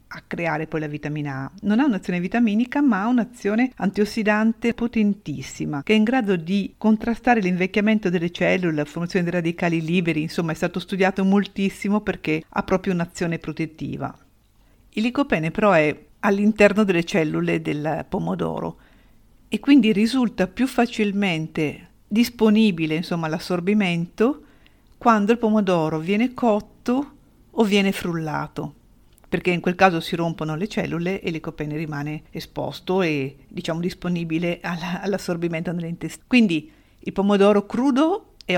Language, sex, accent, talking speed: Italian, female, native, 135 wpm